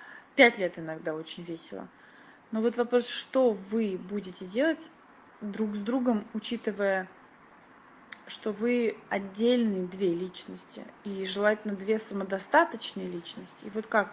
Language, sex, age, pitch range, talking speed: Russian, female, 20-39, 190-235 Hz, 125 wpm